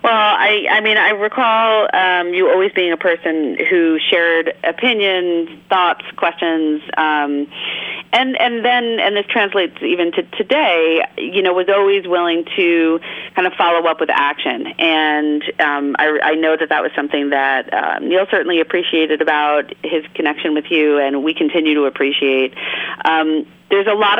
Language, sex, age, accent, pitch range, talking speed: English, female, 40-59, American, 150-180 Hz, 165 wpm